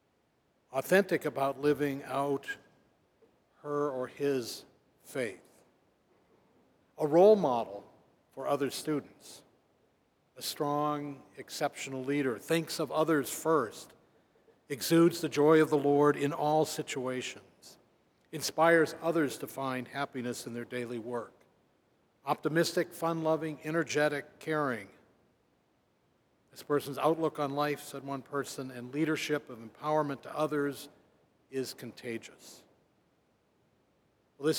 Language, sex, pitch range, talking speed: English, male, 135-160 Hz, 105 wpm